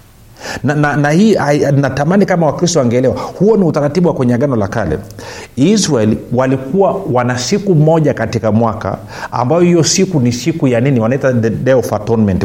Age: 50-69